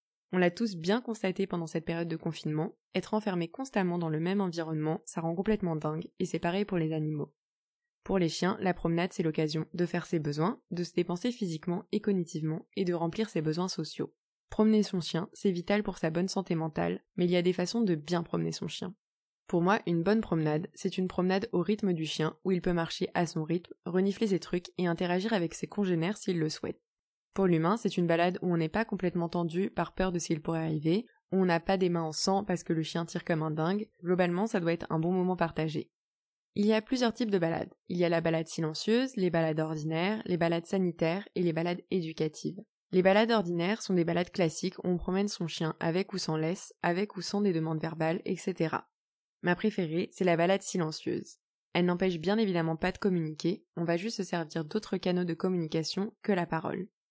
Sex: female